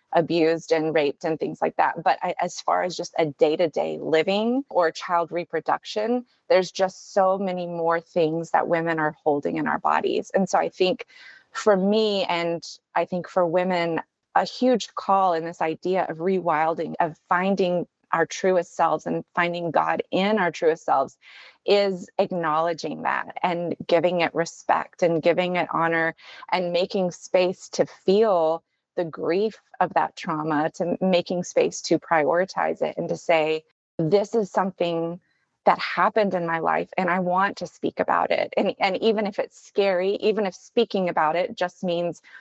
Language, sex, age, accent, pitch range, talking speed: English, female, 20-39, American, 165-190 Hz, 170 wpm